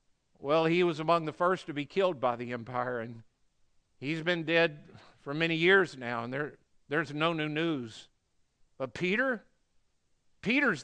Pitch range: 160-245 Hz